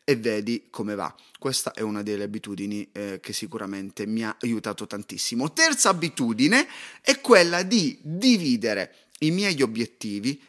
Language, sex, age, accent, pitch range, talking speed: Italian, male, 30-49, native, 110-180 Hz, 145 wpm